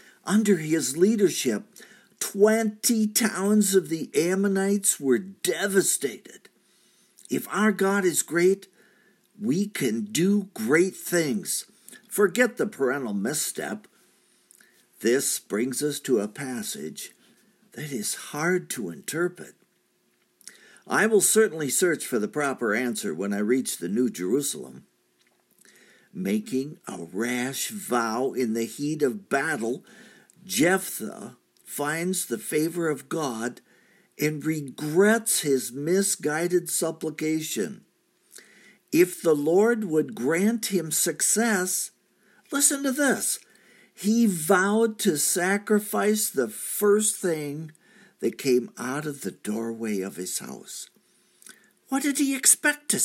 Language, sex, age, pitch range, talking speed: English, male, 60-79, 150-215 Hz, 115 wpm